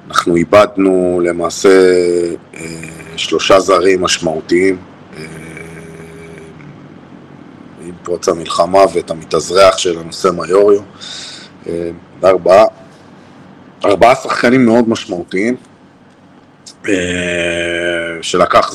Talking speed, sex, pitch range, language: 75 wpm, male, 85-95 Hz, Hebrew